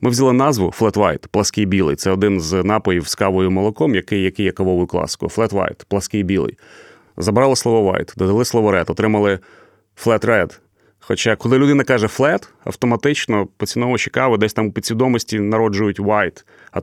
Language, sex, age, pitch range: Ukrainian, male, 30-49, 105-125 Hz